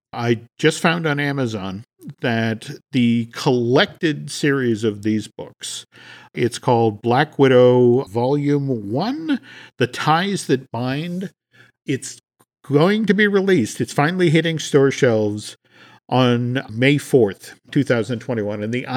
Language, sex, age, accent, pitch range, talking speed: English, male, 50-69, American, 120-160 Hz, 115 wpm